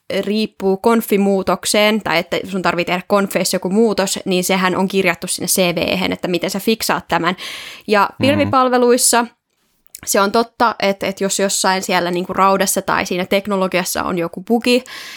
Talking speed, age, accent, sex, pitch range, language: 150 wpm, 20-39, native, female, 180-205 Hz, Finnish